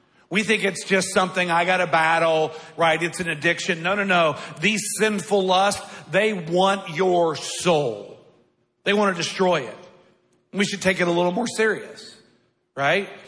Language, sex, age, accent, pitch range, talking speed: English, male, 50-69, American, 170-205 Hz, 165 wpm